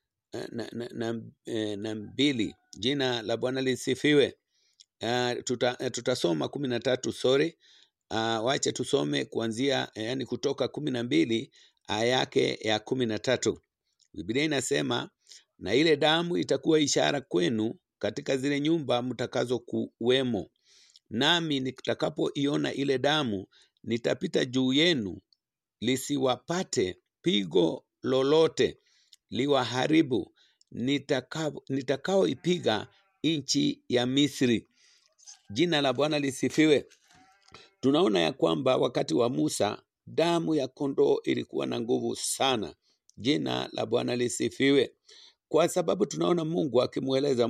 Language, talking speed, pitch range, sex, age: English, 105 wpm, 120-155 Hz, male, 50-69